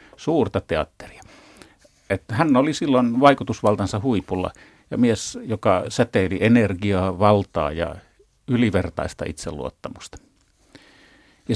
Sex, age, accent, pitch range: male, 50-69, native, 95-120 Hz